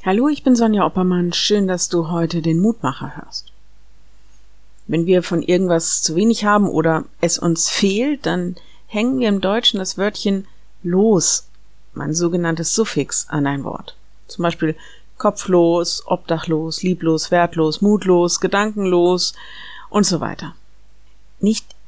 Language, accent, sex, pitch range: German, German, female, 170-225 Hz